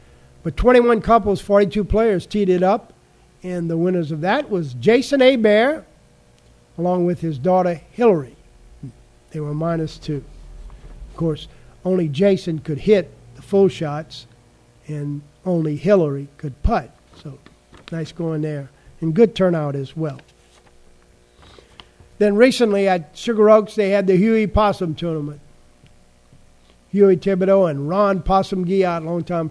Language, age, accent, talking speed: English, 50-69, American, 135 wpm